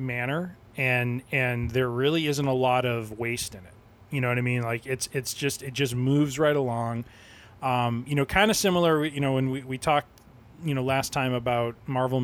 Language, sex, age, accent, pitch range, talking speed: English, male, 20-39, American, 115-130 Hz, 215 wpm